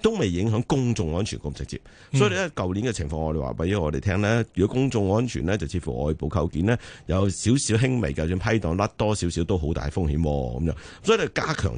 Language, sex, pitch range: Chinese, male, 80-115 Hz